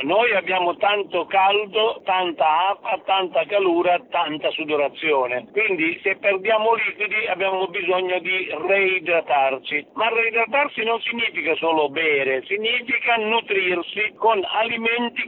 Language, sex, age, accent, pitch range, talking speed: Italian, male, 50-69, native, 165-230 Hz, 110 wpm